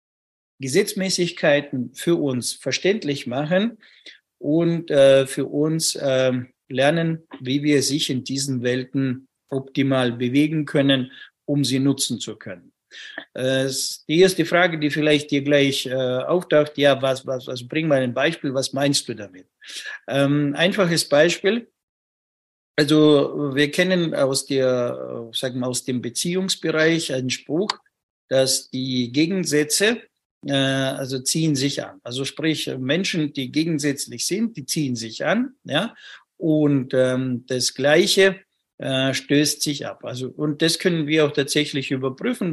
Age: 50-69